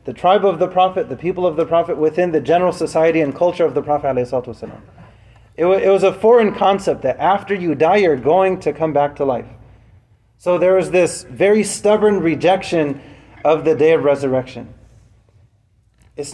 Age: 30-49